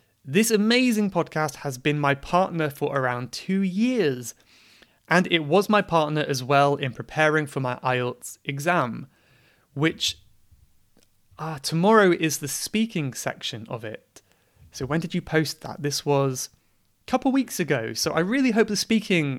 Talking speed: 160 wpm